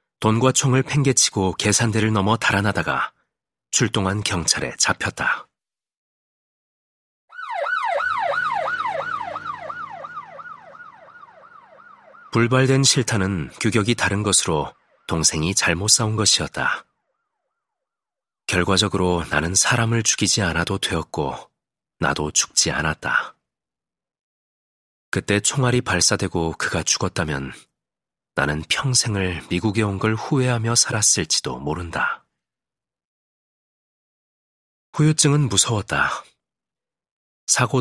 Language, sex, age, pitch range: Korean, male, 40-59, 85-115 Hz